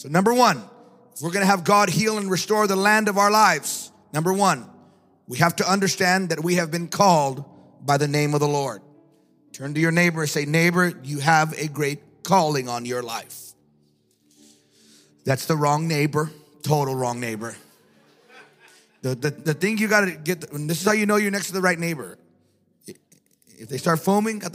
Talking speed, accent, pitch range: 195 wpm, American, 140-215 Hz